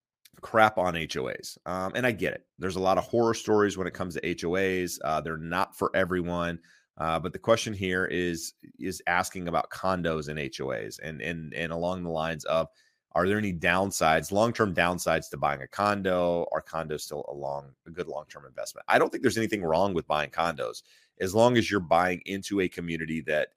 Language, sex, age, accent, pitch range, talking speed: English, male, 30-49, American, 80-95 Hz, 205 wpm